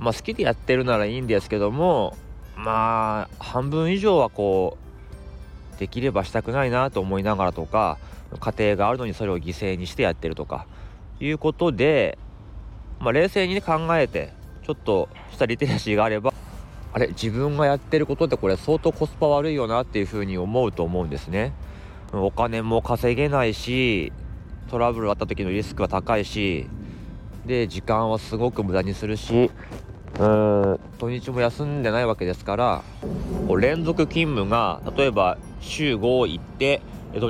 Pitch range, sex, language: 100-130 Hz, male, Japanese